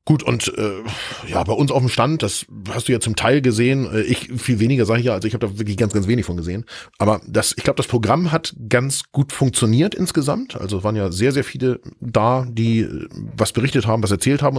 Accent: German